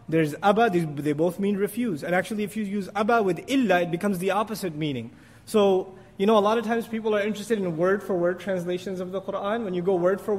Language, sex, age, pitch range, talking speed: English, male, 30-49, 175-235 Hz, 230 wpm